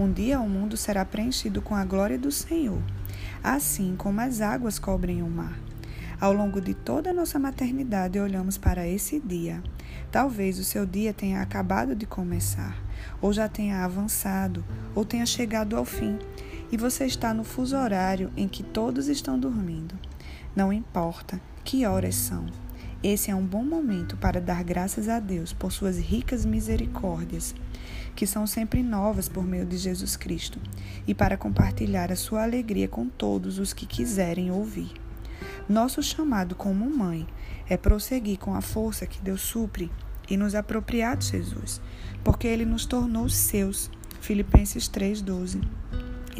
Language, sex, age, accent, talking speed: Portuguese, female, 20-39, Brazilian, 155 wpm